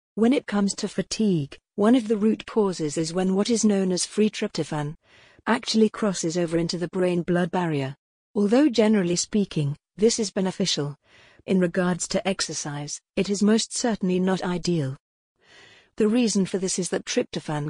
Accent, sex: British, female